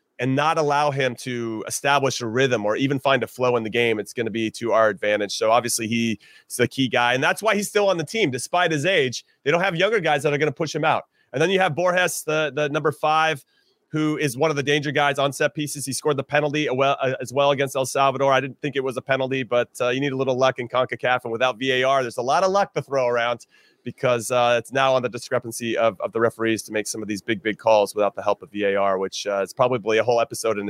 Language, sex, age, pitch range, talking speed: English, male, 30-49, 120-150 Hz, 270 wpm